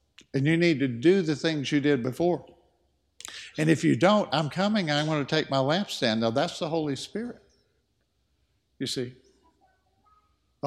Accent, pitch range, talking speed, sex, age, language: American, 140-190 Hz, 175 wpm, male, 60-79, English